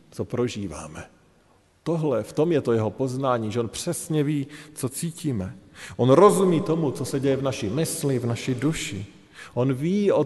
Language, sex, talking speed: Slovak, male, 175 wpm